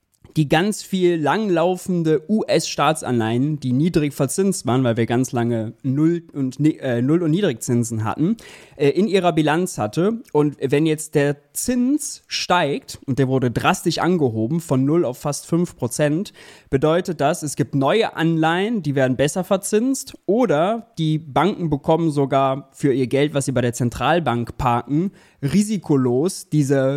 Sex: male